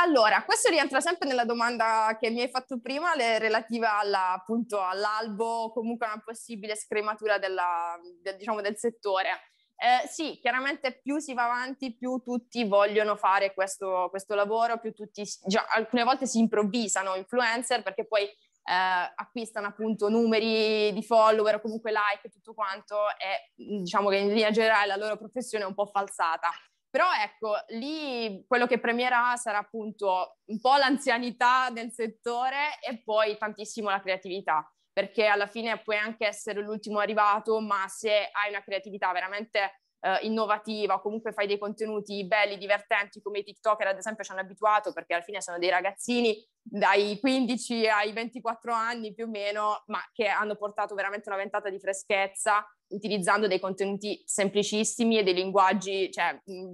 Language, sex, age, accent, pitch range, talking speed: Italian, female, 20-39, native, 200-230 Hz, 165 wpm